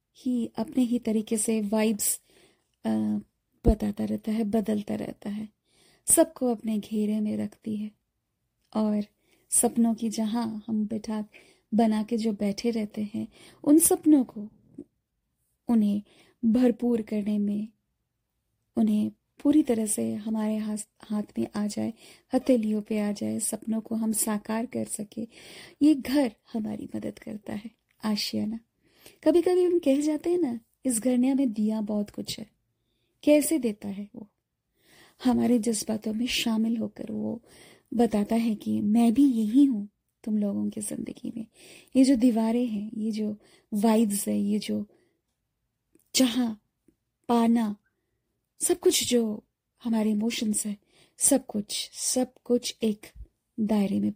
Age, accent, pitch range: 20-39, native, 215-245 Hz